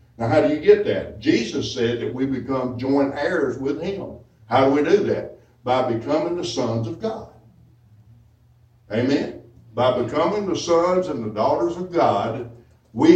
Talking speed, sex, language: 170 wpm, male, English